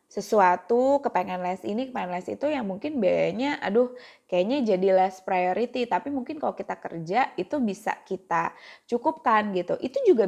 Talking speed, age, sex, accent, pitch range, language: 150 wpm, 20-39, female, native, 195-270 Hz, Indonesian